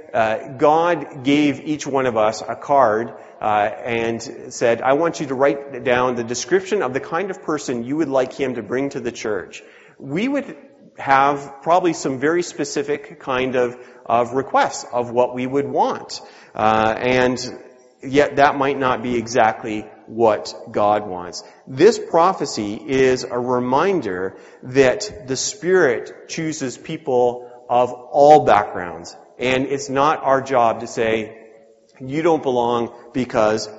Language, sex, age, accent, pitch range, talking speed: English, male, 30-49, American, 115-145 Hz, 150 wpm